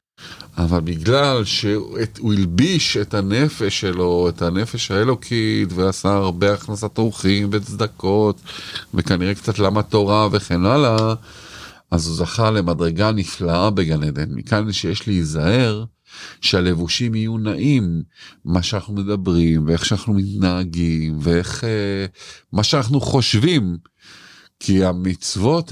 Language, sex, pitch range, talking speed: Hebrew, male, 95-130 Hz, 105 wpm